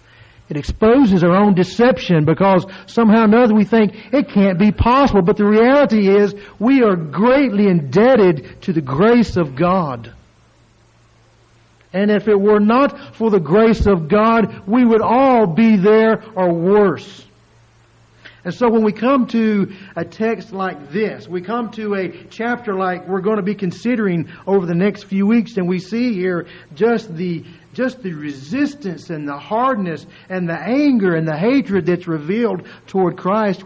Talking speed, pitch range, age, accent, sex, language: 165 wpm, 160-225 Hz, 50-69, American, male, English